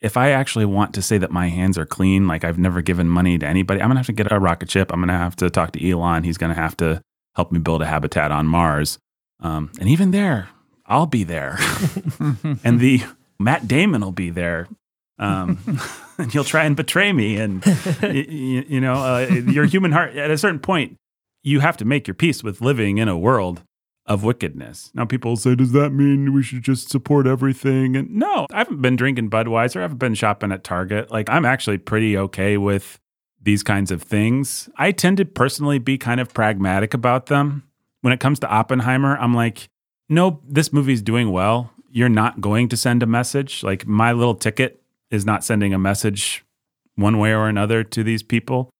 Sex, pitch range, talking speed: male, 95-135 Hz, 205 wpm